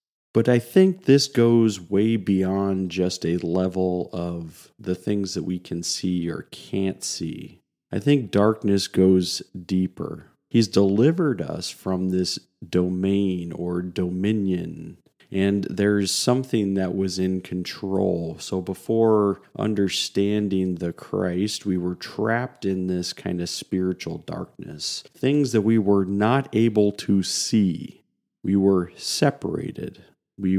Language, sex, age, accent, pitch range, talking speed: English, male, 40-59, American, 90-105 Hz, 130 wpm